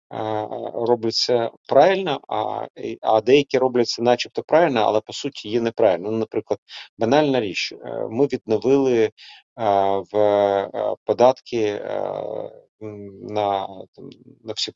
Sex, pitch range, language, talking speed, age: male, 105-125 Hz, Ukrainian, 100 wpm, 30-49